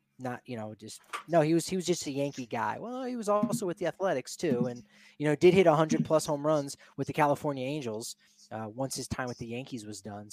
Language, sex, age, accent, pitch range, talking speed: English, male, 20-39, American, 120-145 Hz, 255 wpm